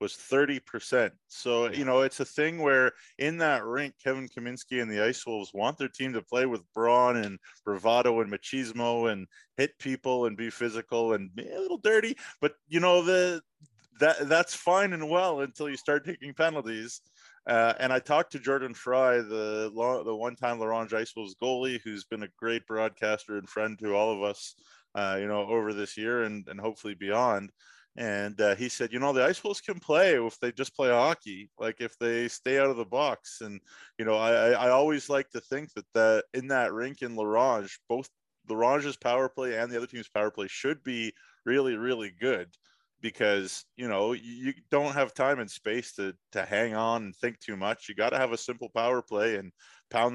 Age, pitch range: 20-39, 110-135 Hz